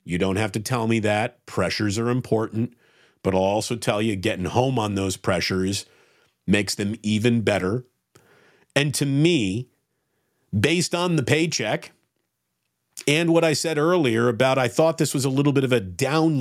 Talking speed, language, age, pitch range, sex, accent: 170 wpm, English, 50-69, 115-160 Hz, male, American